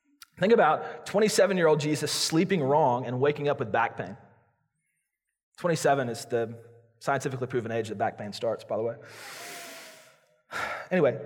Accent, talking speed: American, 140 wpm